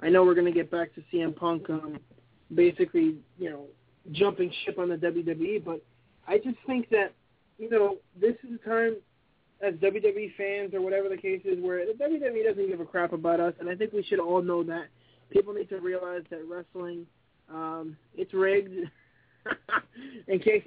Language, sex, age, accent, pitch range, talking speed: English, male, 20-39, American, 180-225 Hz, 205 wpm